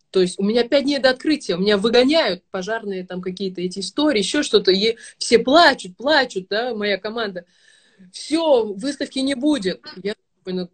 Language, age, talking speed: Russian, 20-39, 170 wpm